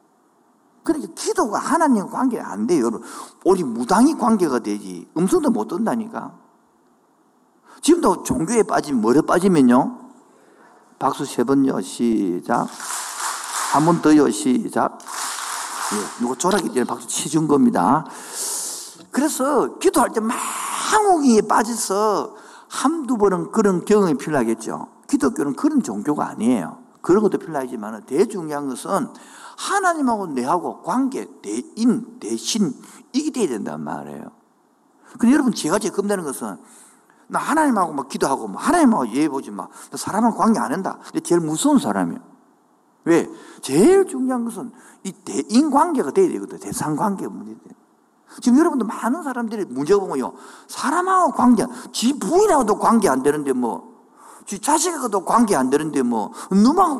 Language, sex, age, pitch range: Korean, male, 50-69, 200-300 Hz